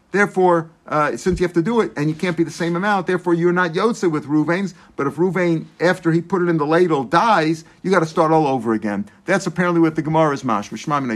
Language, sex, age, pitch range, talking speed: English, male, 50-69, 160-190 Hz, 245 wpm